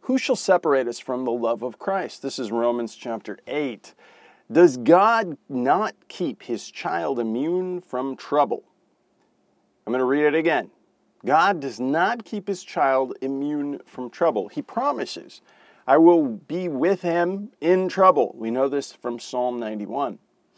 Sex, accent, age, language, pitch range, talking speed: male, American, 40-59, English, 120-180 Hz, 155 wpm